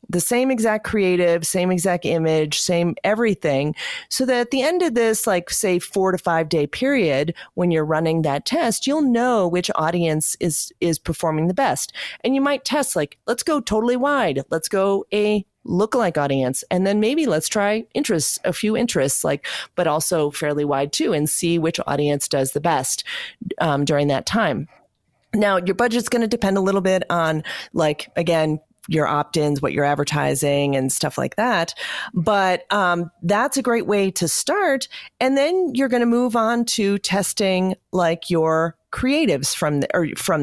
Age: 30-49